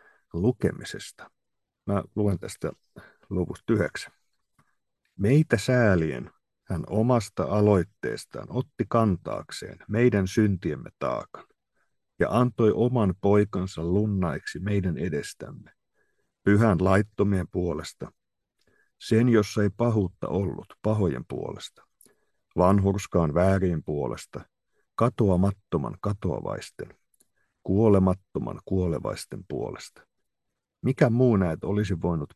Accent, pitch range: native, 90-110 Hz